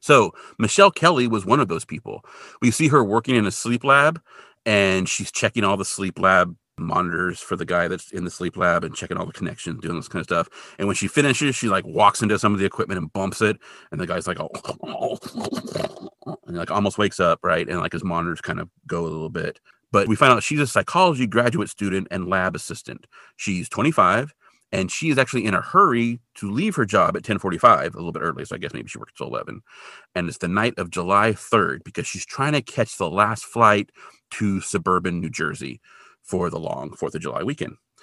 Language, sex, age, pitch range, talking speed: English, male, 30-49, 95-120 Hz, 225 wpm